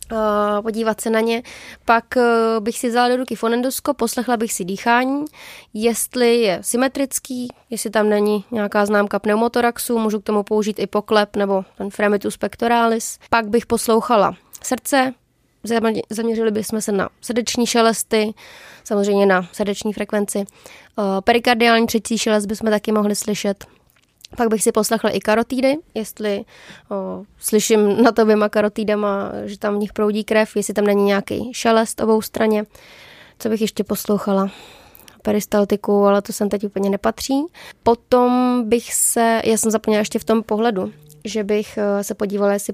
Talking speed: 155 wpm